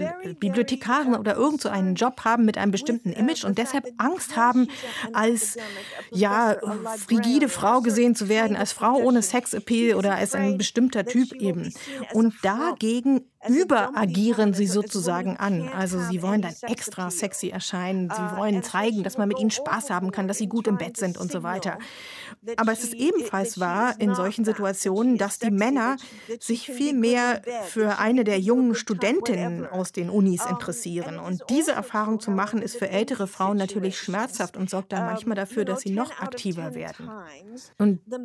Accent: German